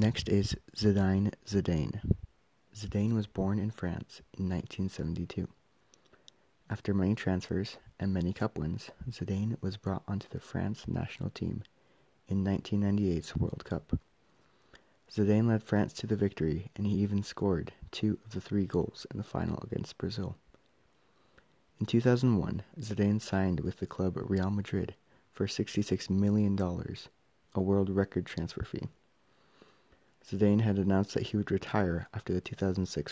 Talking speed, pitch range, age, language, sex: 140 wpm, 95-105 Hz, 30-49, English, male